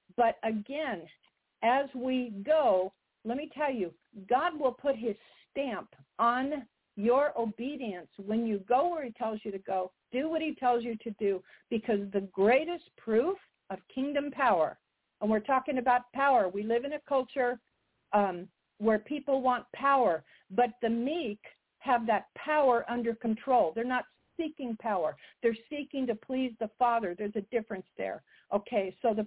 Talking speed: 165 wpm